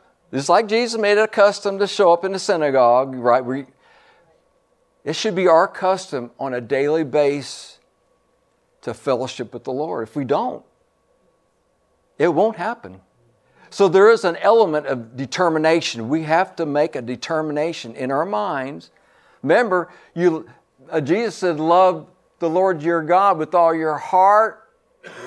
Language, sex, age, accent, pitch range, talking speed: English, male, 60-79, American, 145-195 Hz, 150 wpm